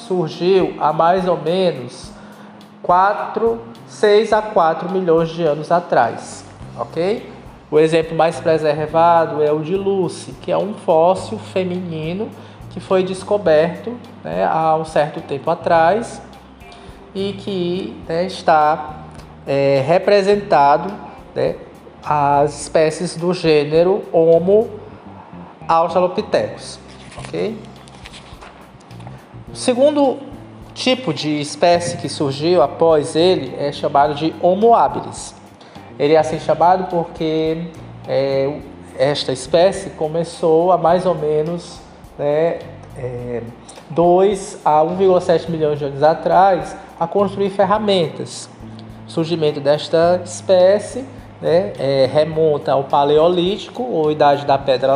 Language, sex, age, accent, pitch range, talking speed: Portuguese, male, 20-39, Brazilian, 150-185 Hz, 110 wpm